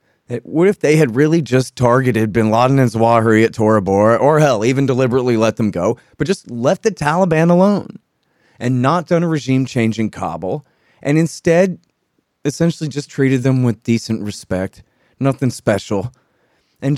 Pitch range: 105-145 Hz